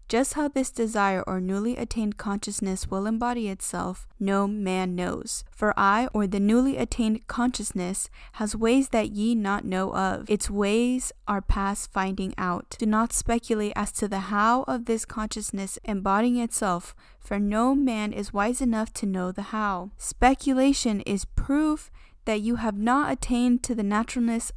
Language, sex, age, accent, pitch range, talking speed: English, female, 10-29, American, 200-230 Hz, 165 wpm